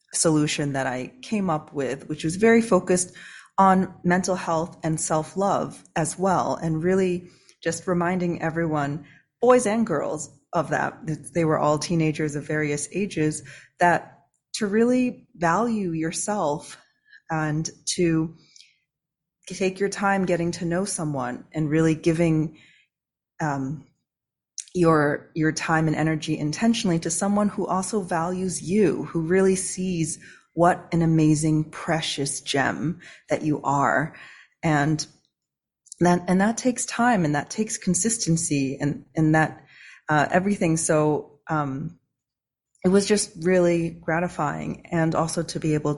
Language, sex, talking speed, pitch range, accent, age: English, female, 135 wpm, 150-180 Hz, American, 30-49